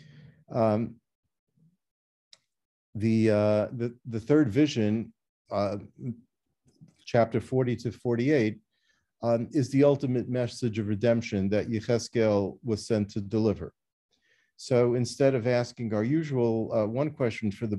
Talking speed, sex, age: 120 wpm, male, 50-69